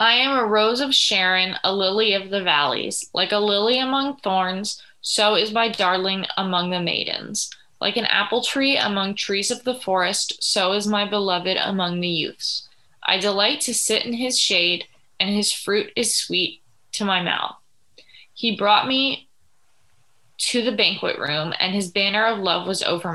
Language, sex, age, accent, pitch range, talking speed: English, female, 20-39, American, 185-215 Hz, 175 wpm